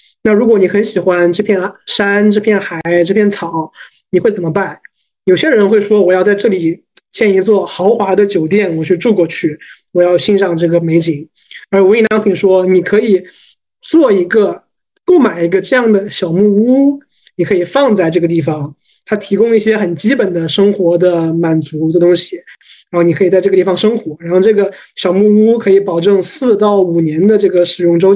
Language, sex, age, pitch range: Chinese, male, 20-39, 175-210 Hz